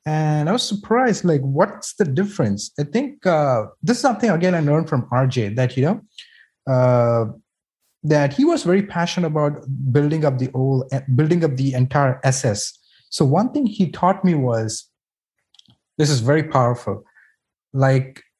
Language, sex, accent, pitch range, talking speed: English, male, Indian, 130-170 Hz, 165 wpm